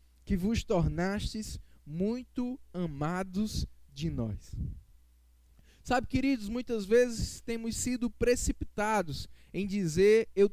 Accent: Brazilian